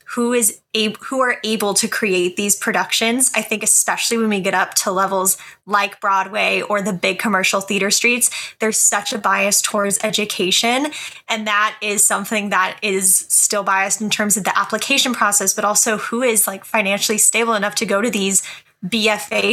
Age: 10-29